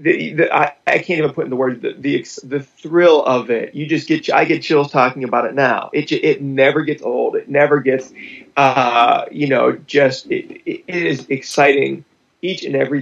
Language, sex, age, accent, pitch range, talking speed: English, male, 30-49, American, 125-150 Hz, 205 wpm